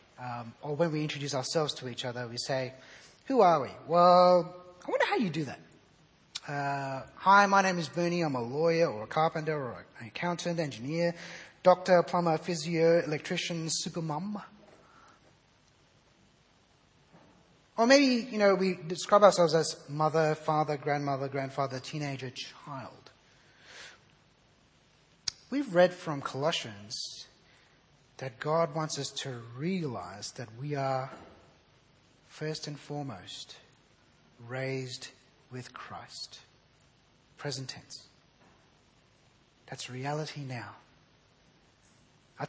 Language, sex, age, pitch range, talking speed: English, male, 30-49, 135-180 Hz, 115 wpm